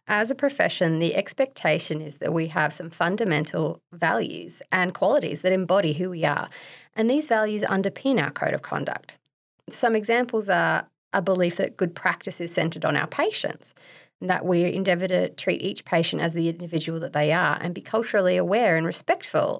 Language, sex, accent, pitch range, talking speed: English, female, Australian, 165-215 Hz, 180 wpm